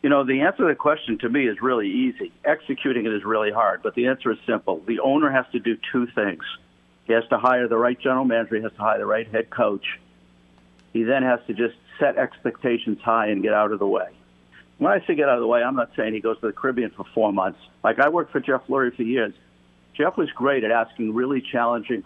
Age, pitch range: 50-69, 105-130 Hz